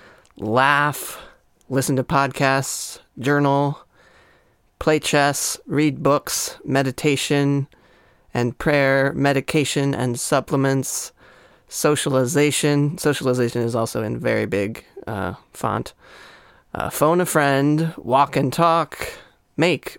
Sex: male